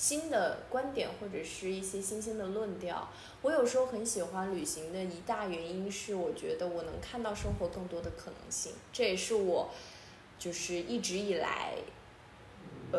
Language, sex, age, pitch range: Chinese, female, 20-39, 185-250 Hz